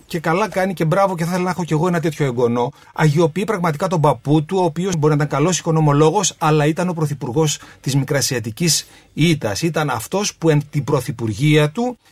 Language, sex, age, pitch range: Greek, male, 30-49, 145-180 Hz